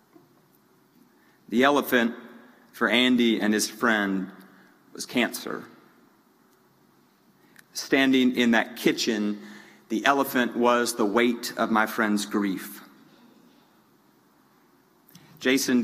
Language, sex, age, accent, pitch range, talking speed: English, male, 40-59, American, 115-135 Hz, 85 wpm